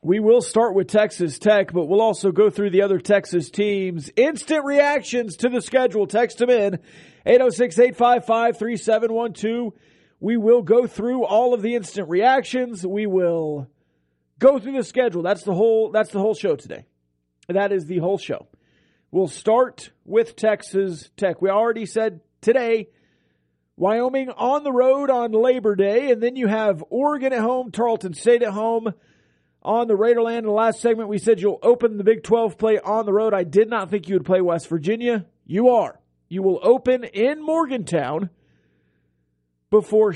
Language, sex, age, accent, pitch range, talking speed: English, male, 40-59, American, 180-240 Hz, 165 wpm